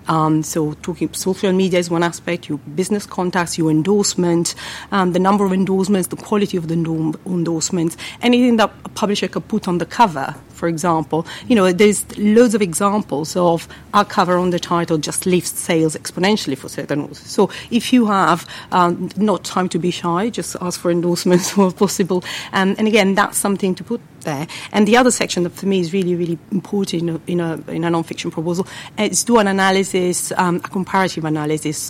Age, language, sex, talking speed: 40-59, English, female, 195 wpm